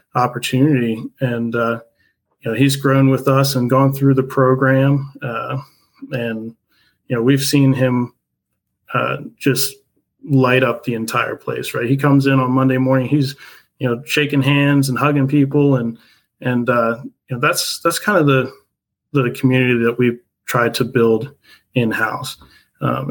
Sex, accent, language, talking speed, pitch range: male, American, English, 165 wpm, 120-140 Hz